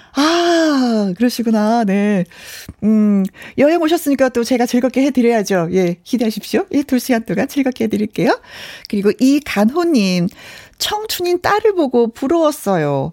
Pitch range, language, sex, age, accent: 200-265 Hz, Korean, female, 40-59, native